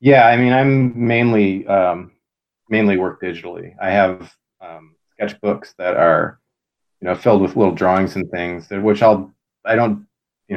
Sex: male